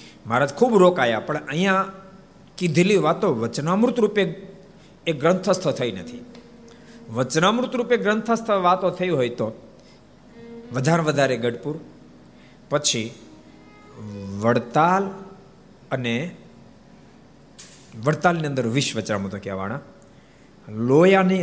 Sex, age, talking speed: male, 50-69, 90 wpm